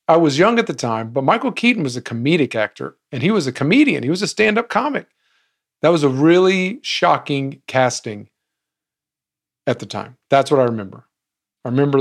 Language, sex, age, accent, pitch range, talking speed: English, male, 50-69, American, 115-145 Hz, 190 wpm